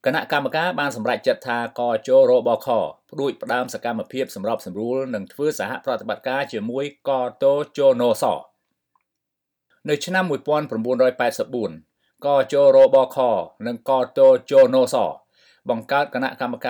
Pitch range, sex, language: 125-155 Hz, male, English